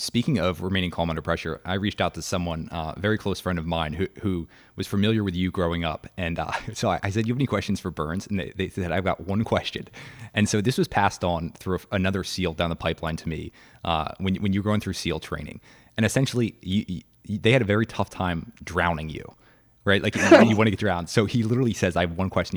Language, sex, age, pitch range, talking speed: English, male, 20-39, 85-110 Hz, 255 wpm